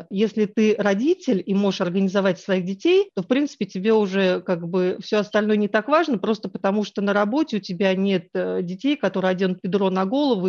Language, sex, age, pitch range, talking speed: Russian, female, 40-59, 190-225 Hz, 195 wpm